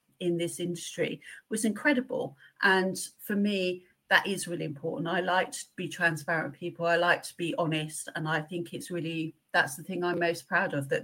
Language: English